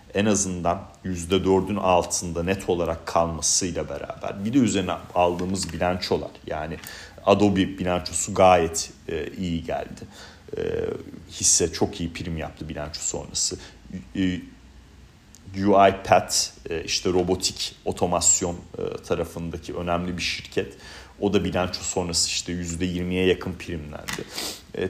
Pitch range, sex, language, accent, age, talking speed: 85-95 Hz, male, Turkish, native, 40-59, 120 wpm